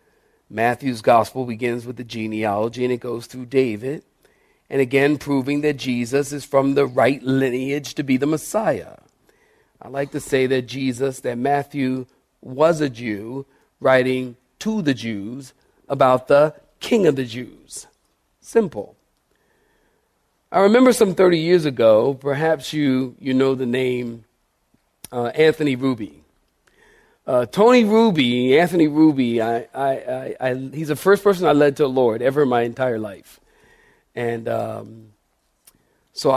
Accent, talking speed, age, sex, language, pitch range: American, 140 wpm, 40-59, male, English, 125-150 Hz